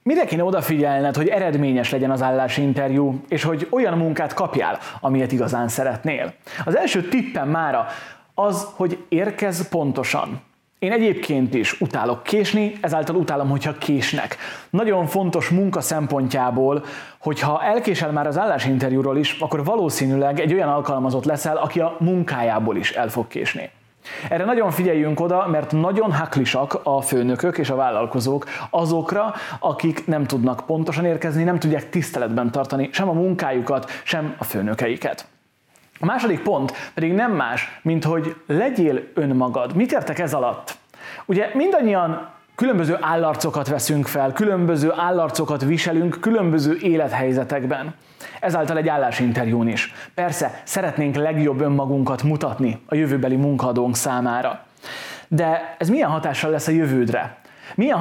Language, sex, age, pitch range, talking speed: Hungarian, male, 30-49, 135-175 Hz, 135 wpm